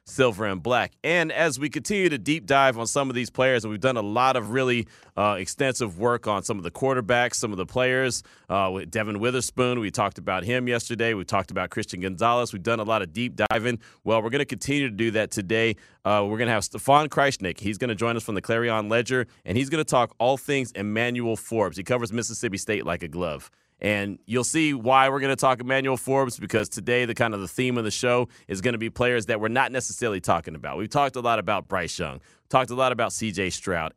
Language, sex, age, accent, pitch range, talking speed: English, male, 30-49, American, 105-130 Hz, 245 wpm